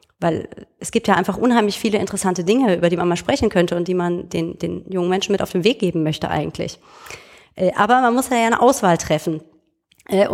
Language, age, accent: German, 30-49, German